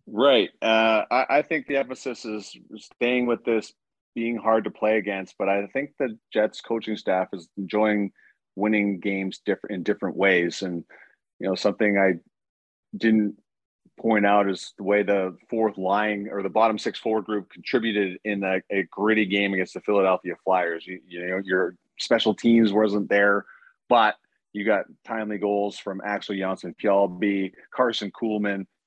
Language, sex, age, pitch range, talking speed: English, male, 30-49, 100-110 Hz, 165 wpm